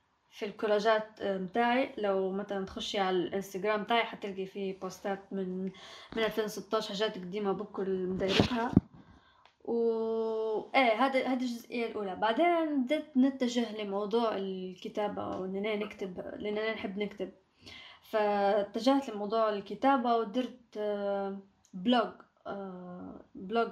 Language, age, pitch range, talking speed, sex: Arabic, 20-39, 200-235 Hz, 105 wpm, female